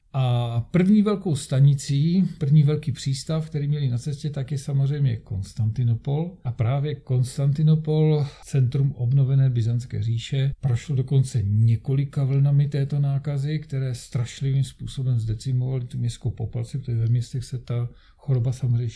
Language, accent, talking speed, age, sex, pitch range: Czech, native, 135 wpm, 50-69, male, 120-155 Hz